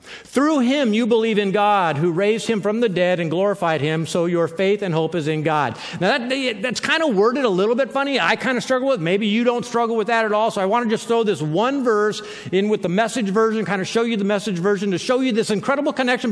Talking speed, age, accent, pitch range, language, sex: 270 wpm, 50-69, American, 175-235 Hz, English, male